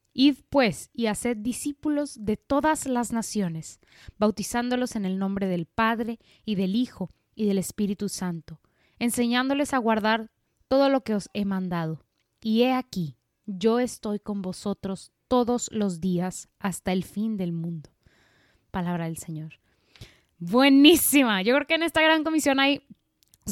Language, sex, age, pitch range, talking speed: Spanish, female, 20-39, 180-240 Hz, 150 wpm